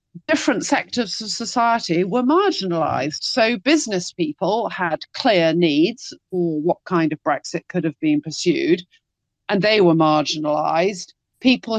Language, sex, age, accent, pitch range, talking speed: English, female, 40-59, British, 165-210 Hz, 130 wpm